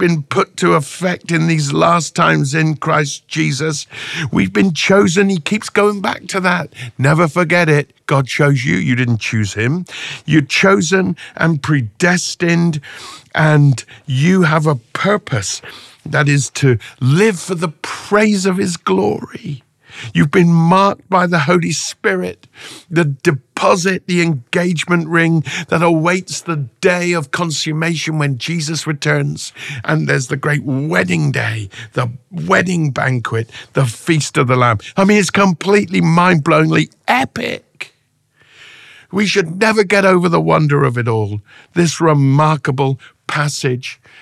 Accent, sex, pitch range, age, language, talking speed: British, male, 135-175 Hz, 50-69, English, 140 wpm